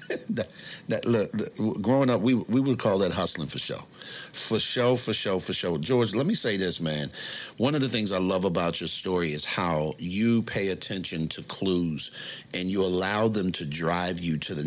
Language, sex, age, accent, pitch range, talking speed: English, male, 50-69, American, 90-120 Hz, 195 wpm